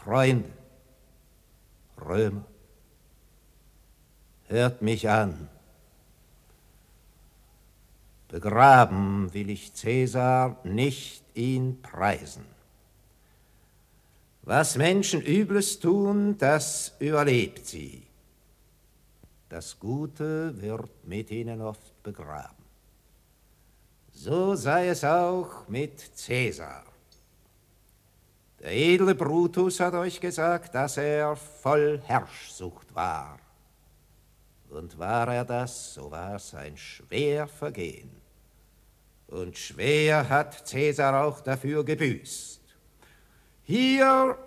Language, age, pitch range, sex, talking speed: German, 60-79, 105-150 Hz, male, 80 wpm